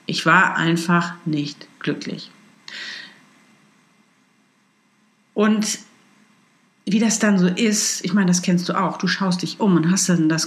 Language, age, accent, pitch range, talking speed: German, 50-69, German, 170-210 Hz, 145 wpm